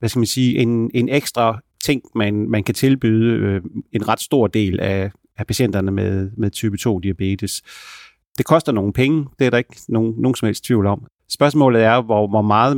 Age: 30-49